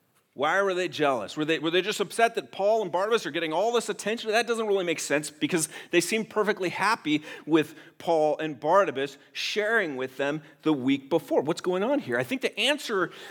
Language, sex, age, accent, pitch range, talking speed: English, male, 40-59, American, 140-220 Hz, 210 wpm